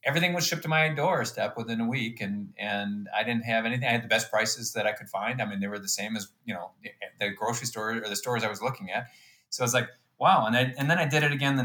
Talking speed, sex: 295 wpm, male